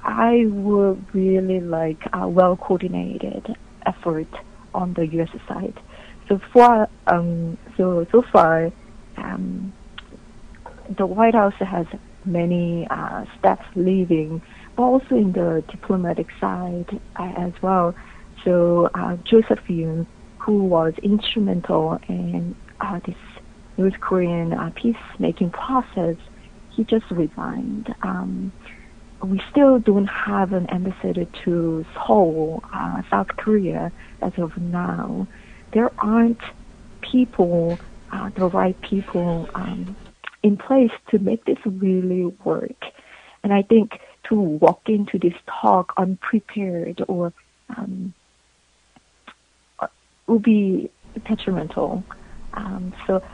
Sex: female